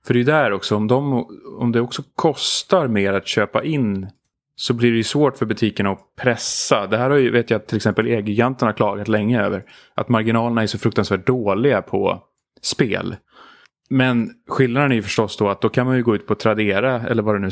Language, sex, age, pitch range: Swedish, male, 30-49, 105-130 Hz